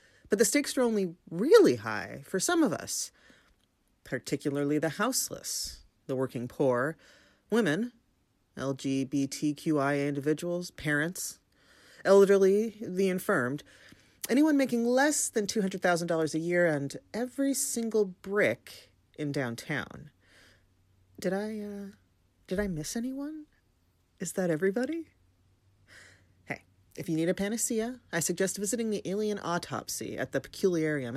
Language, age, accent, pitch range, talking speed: English, 30-49, American, 140-225 Hz, 125 wpm